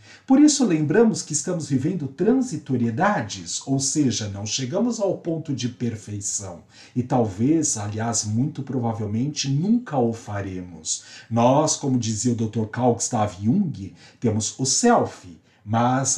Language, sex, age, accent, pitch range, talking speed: Portuguese, male, 50-69, Brazilian, 120-170 Hz, 130 wpm